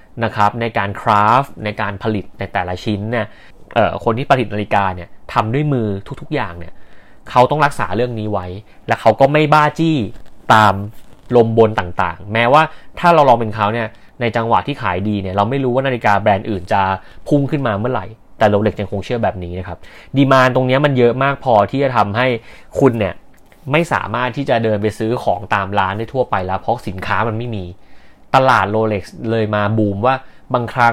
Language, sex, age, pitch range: Thai, male, 30-49, 100-125 Hz